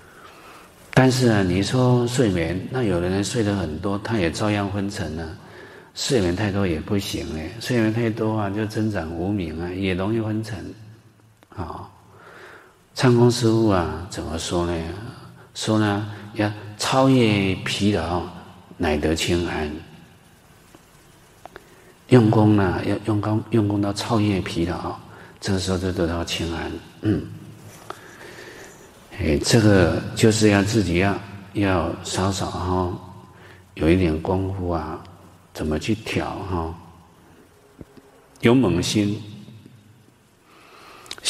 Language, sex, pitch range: Chinese, male, 90-110 Hz